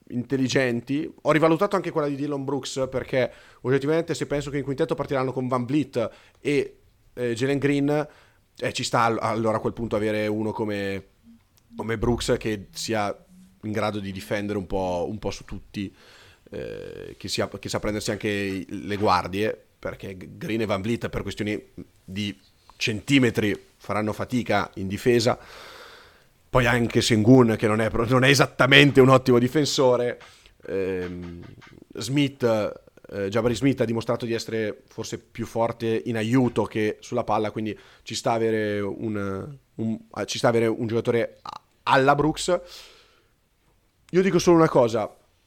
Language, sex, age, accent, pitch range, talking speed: Italian, male, 30-49, native, 105-140 Hz, 155 wpm